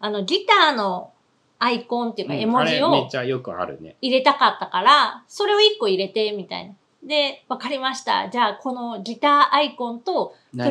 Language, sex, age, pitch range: Japanese, female, 30-49, 210-305 Hz